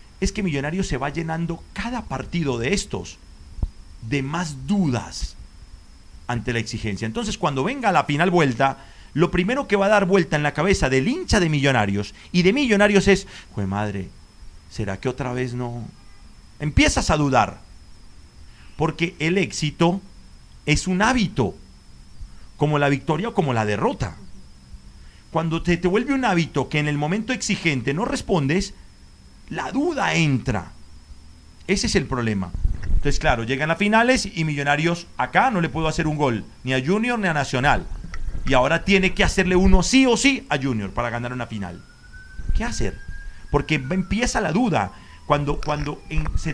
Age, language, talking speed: 40-59, Spanish, 165 wpm